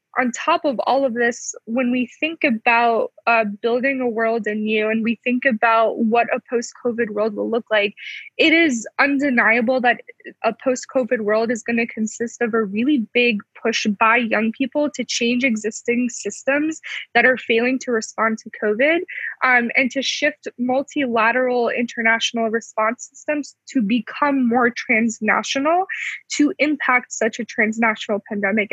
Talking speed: 155 wpm